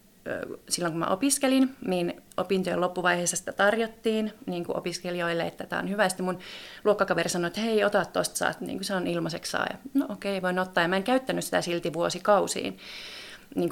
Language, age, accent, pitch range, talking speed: Finnish, 30-49, native, 170-205 Hz, 180 wpm